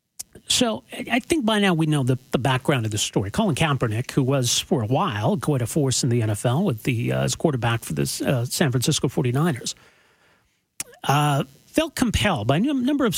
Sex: male